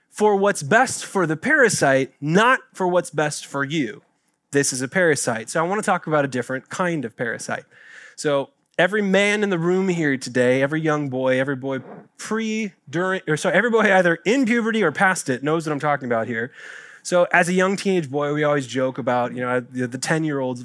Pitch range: 145-215 Hz